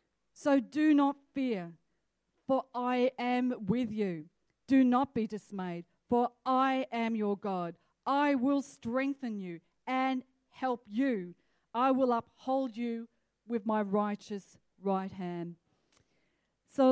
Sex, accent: female, Australian